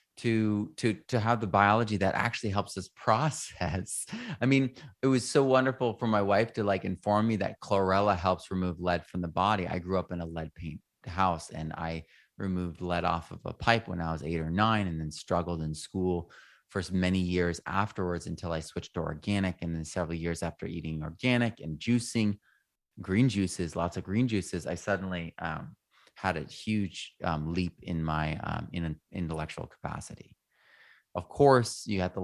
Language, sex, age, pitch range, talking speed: English, male, 30-49, 80-100 Hz, 190 wpm